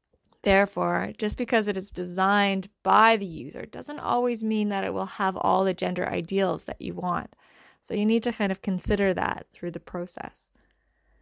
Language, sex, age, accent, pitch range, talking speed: English, female, 20-39, American, 180-215 Hz, 180 wpm